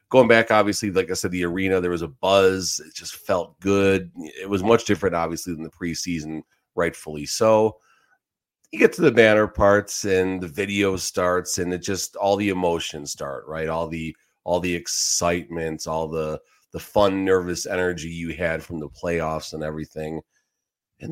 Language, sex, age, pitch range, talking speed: English, male, 30-49, 80-100 Hz, 180 wpm